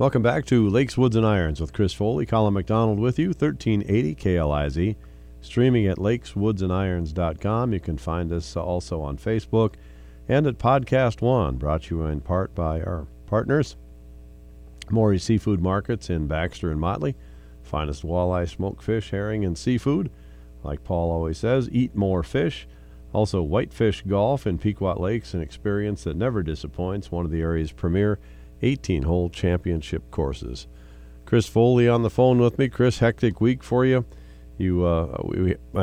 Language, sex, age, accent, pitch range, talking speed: English, male, 50-69, American, 80-110 Hz, 155 wpm